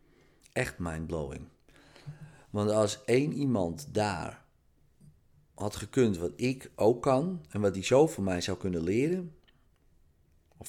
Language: Dutch